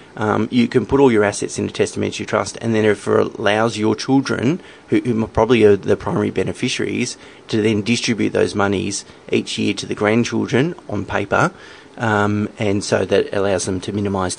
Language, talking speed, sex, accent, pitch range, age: English, 185 wpm, male, Australian, 100-120 Hz, 30-49